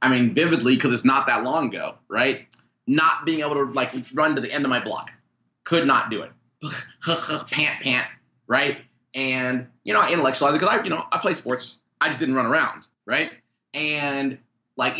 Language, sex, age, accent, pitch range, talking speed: English, male, 30-49, American, 125-150 Hz, 200 wpm